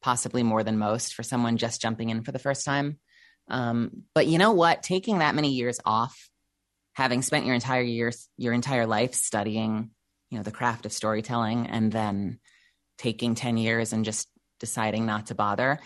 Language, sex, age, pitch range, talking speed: English, female, 30-49, 115-165 Hz, 185 wpm